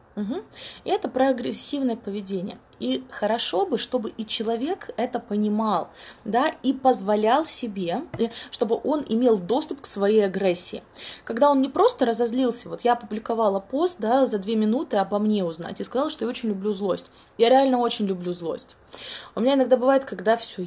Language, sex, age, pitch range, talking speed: Russian, female, 20-39, 205-265 Hz, 170 wpm